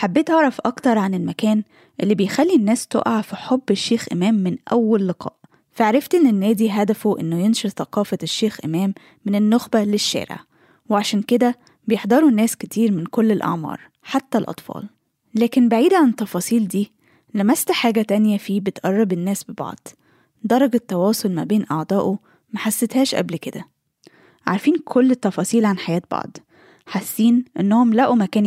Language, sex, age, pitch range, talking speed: Arabic, female, 20-39, 195-235 Hz, 145 wpm